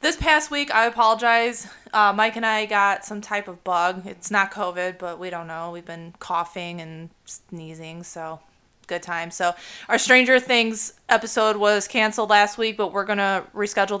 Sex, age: female, 20-39